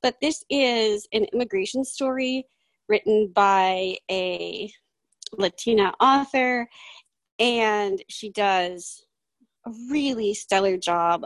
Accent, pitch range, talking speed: American, 195-325 Hz, 95 wpm